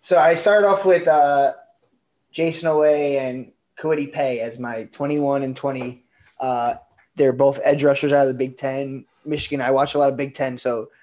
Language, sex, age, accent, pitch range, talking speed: English, male, 20-39, American, 125-145 Hz, 190 wpm